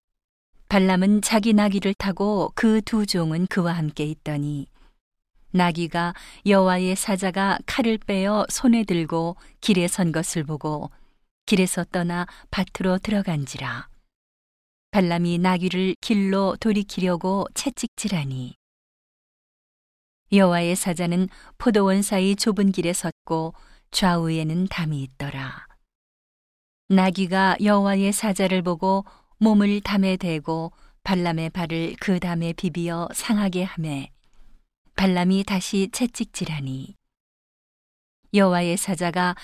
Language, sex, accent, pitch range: Korean, female, native, 170-200 Hz